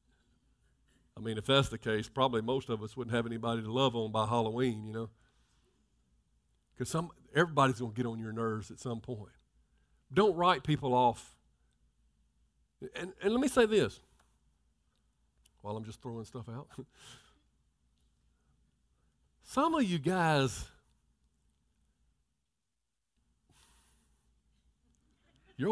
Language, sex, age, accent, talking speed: English, male, 50-69, American, 120 wpm